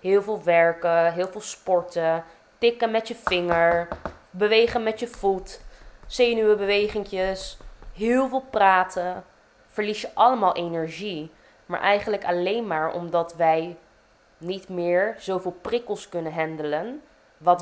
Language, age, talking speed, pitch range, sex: Dutch, 20-39, 120 wpm, 155-185 Hz, female